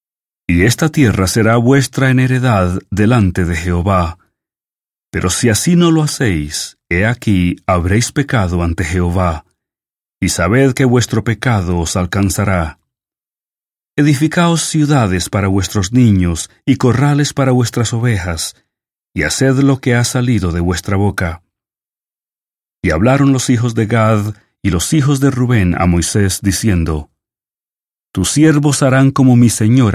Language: English